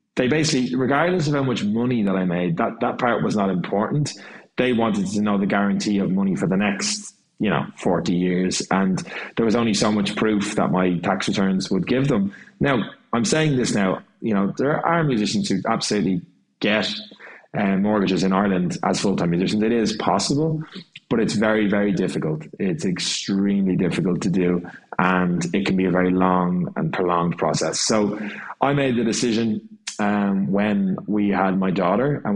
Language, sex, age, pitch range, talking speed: English, male, 20-39, 95-115 Hz, 185 wpm